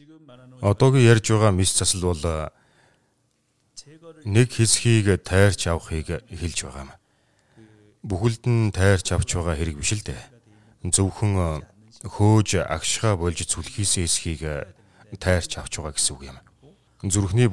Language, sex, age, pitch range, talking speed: English, male, 30-49, 85-115 Hz, 105 wpm